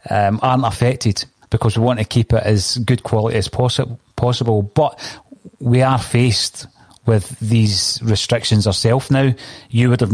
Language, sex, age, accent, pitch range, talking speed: English, male, 30-49, British, 110-130 Hz, 160 wpm